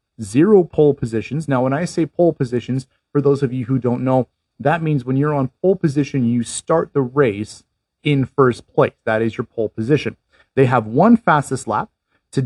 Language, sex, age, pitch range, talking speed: English, male, 30-49, 120-150 Hz, 195 wpm